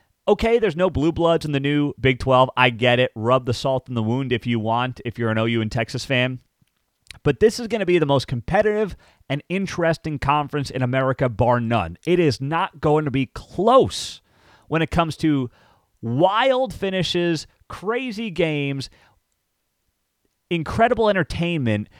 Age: 30-49